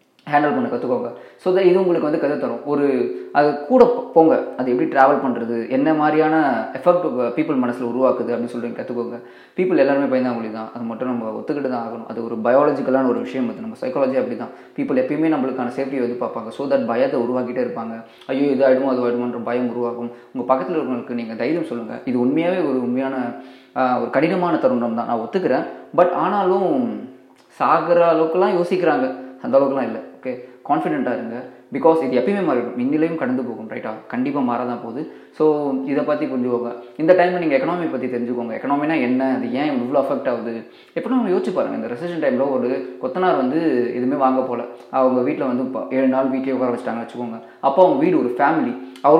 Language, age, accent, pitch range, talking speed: Tamil, 20-39, native, 120-160 Hz, 110 wpm